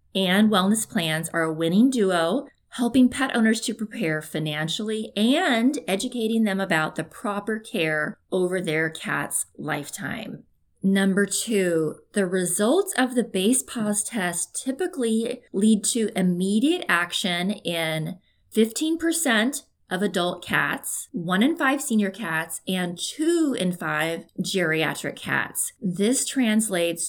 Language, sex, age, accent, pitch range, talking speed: English, female, 20-39, American, 170-235 Hz, 125 wpm